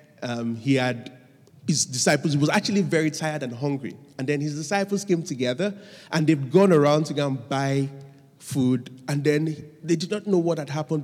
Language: English